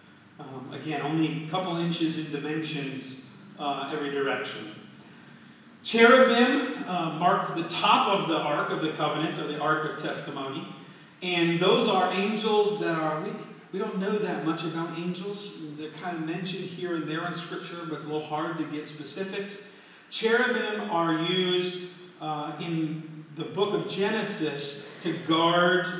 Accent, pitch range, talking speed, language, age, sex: American, 145-185 Hz, 160 wpm, English, 40-59, male